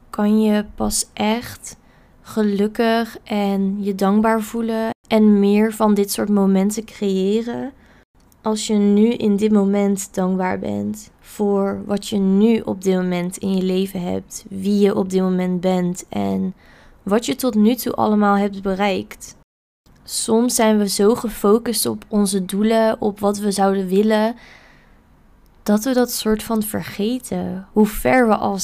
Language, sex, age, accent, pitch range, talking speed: Dutch, female, 20-39, Dutch, 195-215 Hz, 155 wpm